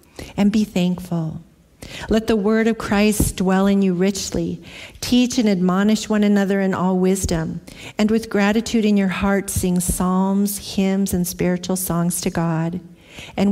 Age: 50-69